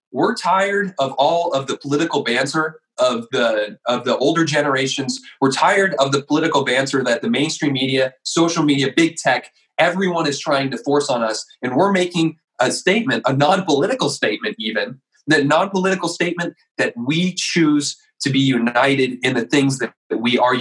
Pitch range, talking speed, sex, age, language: 125-165 Hz, 170 wpm, male, 20-39, English